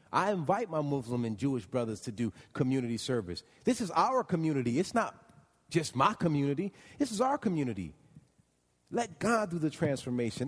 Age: 40-59